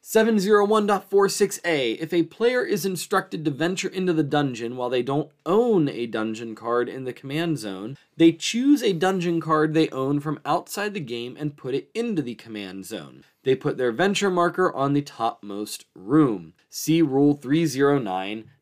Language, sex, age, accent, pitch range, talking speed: English, male, 20-39, American, 120-180 Hz, 170 wpm